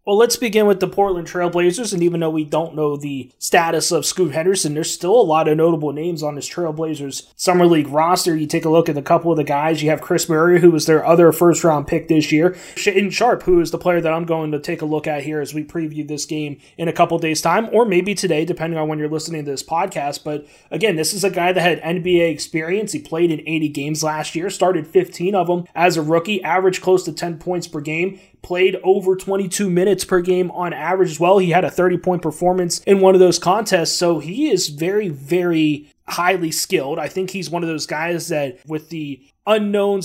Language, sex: English, male